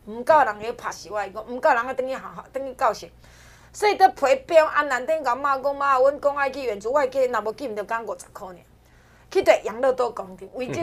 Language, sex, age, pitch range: Chinese, female, 30-49, 215-310 Hz